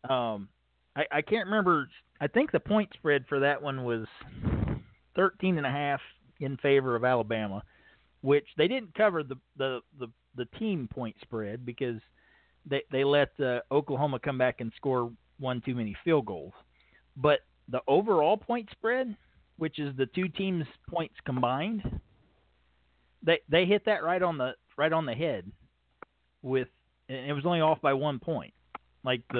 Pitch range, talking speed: 115-155 Hz, 165 wpm